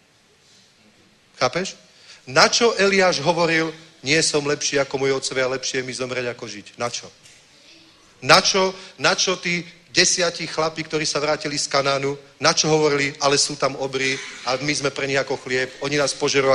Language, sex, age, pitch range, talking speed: Czech, male, 40-59, 130-160 Hz, 150 wpm